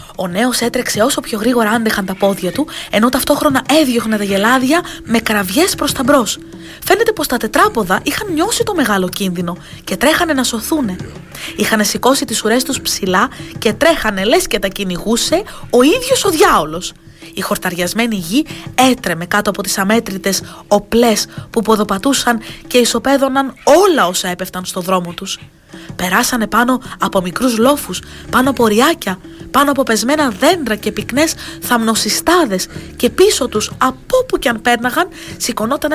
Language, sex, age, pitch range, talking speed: Greek, female, 20-39, 190-280 Hz, 150 wpm